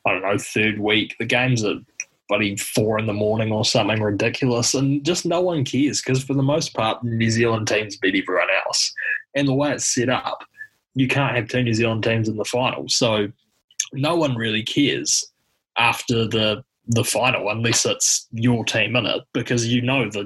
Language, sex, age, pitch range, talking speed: English, male, 20-39, 110-135 Hz, 200 wpm